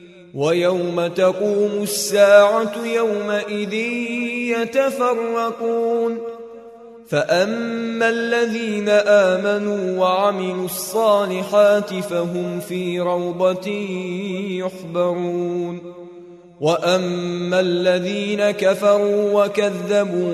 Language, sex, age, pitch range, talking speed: Arabic, male, 20-39, 185-230 Hz, 55 wpm